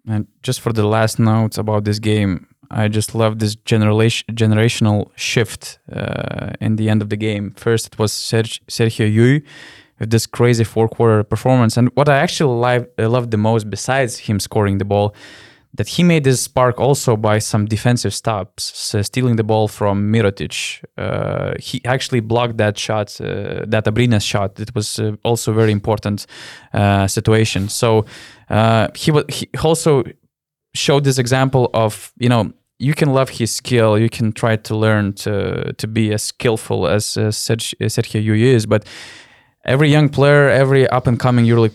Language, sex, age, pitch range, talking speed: English, male, 20-39, 105-125 Hz, 170 wpm